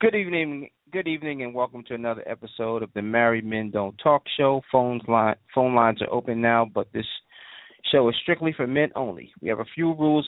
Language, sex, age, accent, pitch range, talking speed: English, male, 40-59, American, 105-140 Hz, 210 wpm